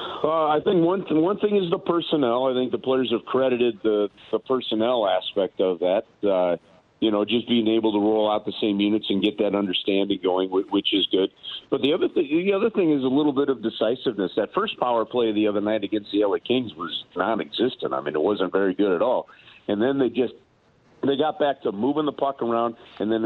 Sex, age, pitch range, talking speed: male, 50-69, 105-125 Hz, 230 wpm